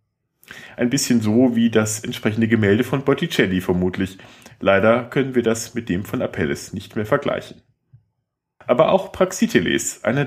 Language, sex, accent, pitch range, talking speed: German, male, German, 110-150 Hz, 145 wpm